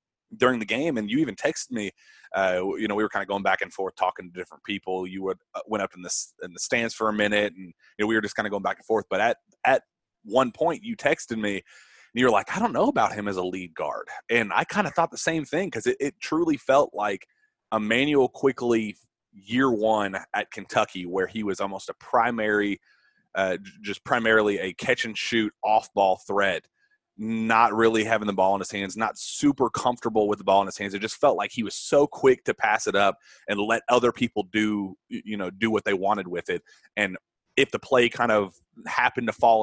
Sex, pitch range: male, 100-120 Hz